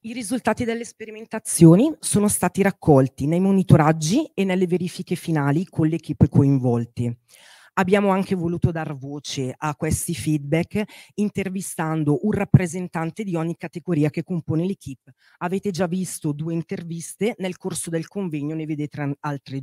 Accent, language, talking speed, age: native, Italian, 140 wpm, 40-59